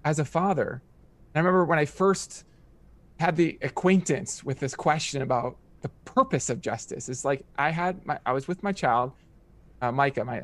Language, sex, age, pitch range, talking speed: English, male, 20-39, 130-165 Hz, 185 wpm